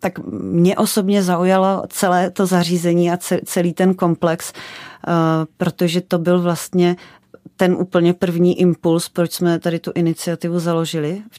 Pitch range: 155-170 Hz